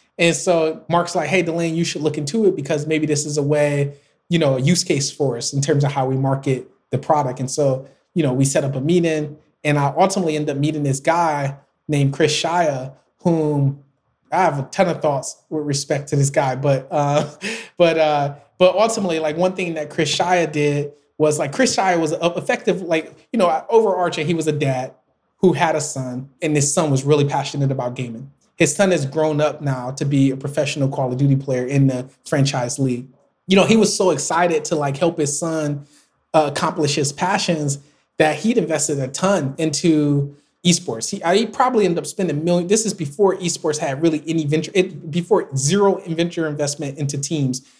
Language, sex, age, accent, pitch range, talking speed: English, male, 20-39, American, 140-170 Hz, 205 wpm